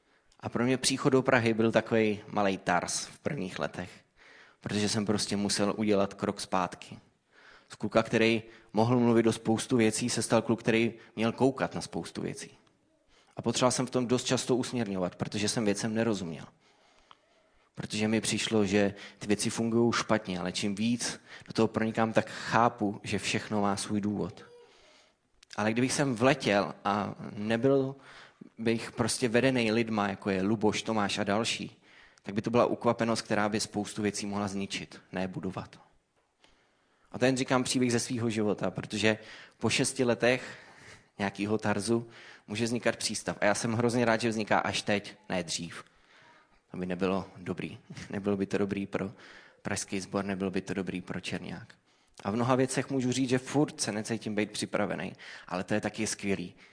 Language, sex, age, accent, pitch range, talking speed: Czech, male, 20-39, native, 100-120 Hz, 170 wpm